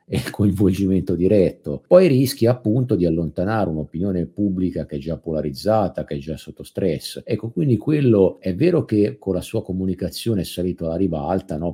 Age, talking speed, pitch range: 50-69, 175 wpm, 80-100 Hz